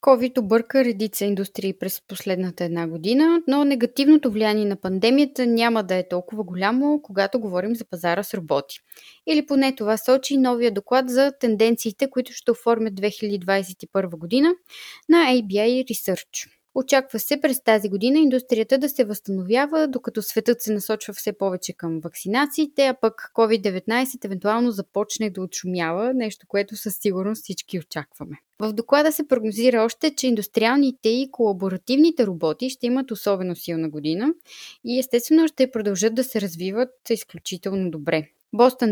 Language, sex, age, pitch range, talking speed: Bulgarian, female, 20-39, 190-255 Hz, 145 wpm